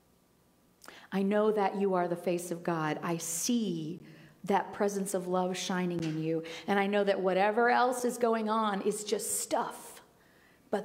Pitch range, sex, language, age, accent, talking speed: 175-215 Hz, female, English, 40-59, American, 170 wpm